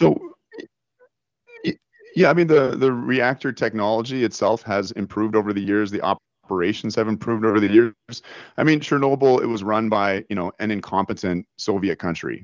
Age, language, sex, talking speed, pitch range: 30-49, English, male, 165 wpm, 90-120 Hz